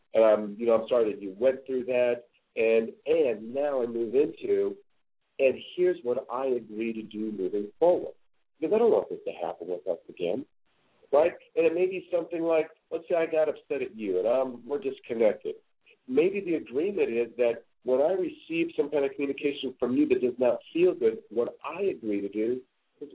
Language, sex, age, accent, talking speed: English, male, 50-69, American, 200 wpm